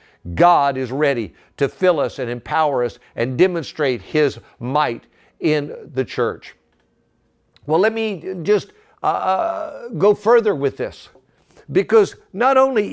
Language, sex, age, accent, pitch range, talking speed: English, male, 60-79, American, 150-215 Hz, 130 wpm